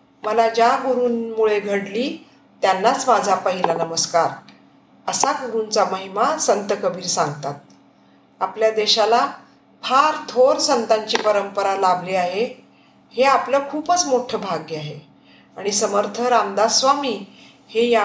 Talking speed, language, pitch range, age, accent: 105 wpm, Marathi, 195-245 Hz, 50-69, native